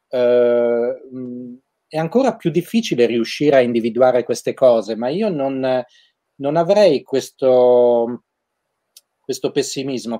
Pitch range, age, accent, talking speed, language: 120-155 Hz, 30-49, native, 105 wpm, Italian